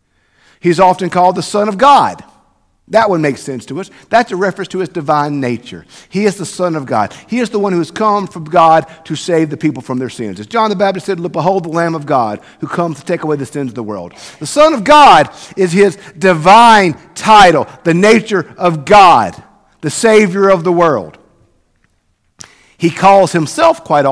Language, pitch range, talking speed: English, 150-200 Hz, 205 wpm